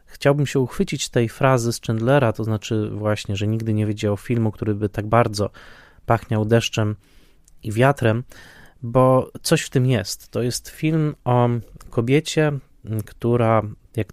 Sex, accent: male, native